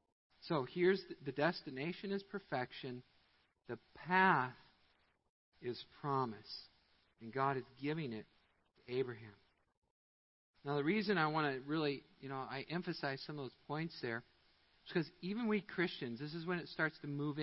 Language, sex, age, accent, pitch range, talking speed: English, male, 50-69, American, 115-165 Hz, 155 wpm